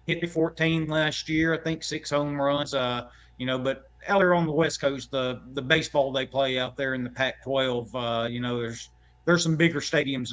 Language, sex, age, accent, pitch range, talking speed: English, male, 30-49, American, 125-155 Hz, 220 wpm